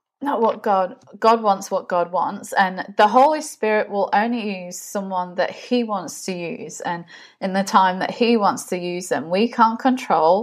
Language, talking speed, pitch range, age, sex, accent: English, 195 wpm, 180-225 Hz, 20-39, female, British